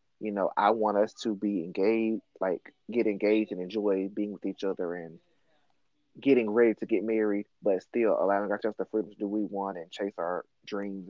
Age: 20-39